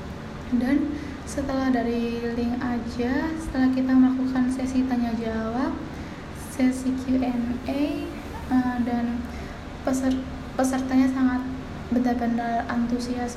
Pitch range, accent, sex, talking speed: 235-260 Hz, native, female, 90 wpm